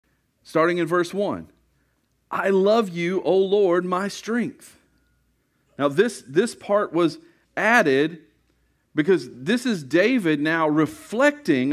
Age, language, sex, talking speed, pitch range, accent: 40-59, English, male, 120 wpm, 155-230 Hz, American